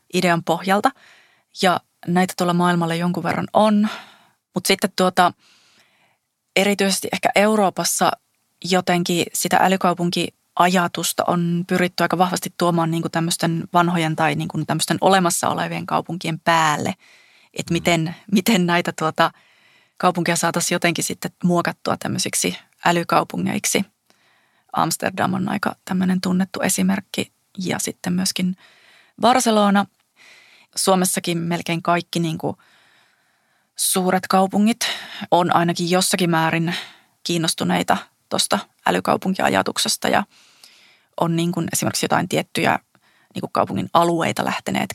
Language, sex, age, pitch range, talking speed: Finnish, female, 30-49, 170-190 Hz, 110 wpm